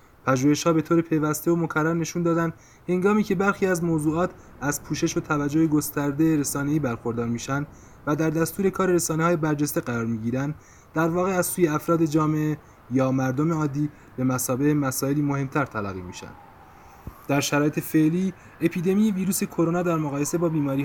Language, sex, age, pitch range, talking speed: Persian, male, 30-49, 130-165 Hz, 160 wpm